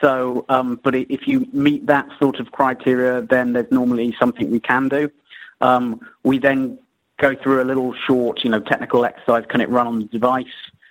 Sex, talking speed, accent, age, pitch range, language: male, 195 wpm, British, 30-49, 115-130 Hz, English